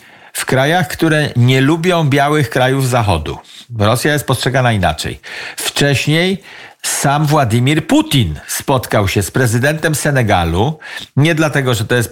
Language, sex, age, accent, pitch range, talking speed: Polish, male, 50-69, native, 115-155 Hz, 130 wpm